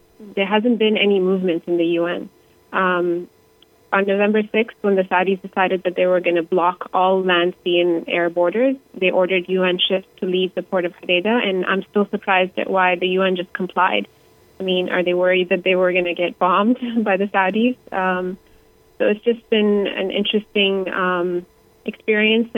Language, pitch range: English, 175-195 Hz